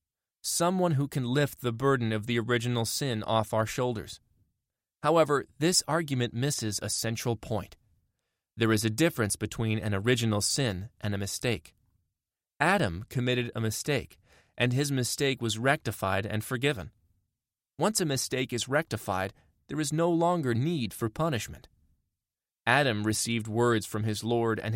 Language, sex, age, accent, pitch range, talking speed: English, male, 30-49, American, 105-135 Hz, 150 wpm